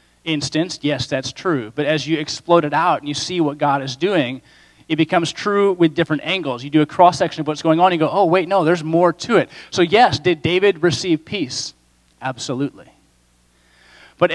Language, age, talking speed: English, 30-49, 200 wpm